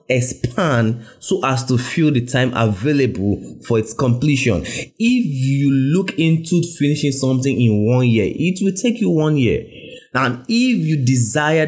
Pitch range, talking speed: 115-150 Hz, 155 wpm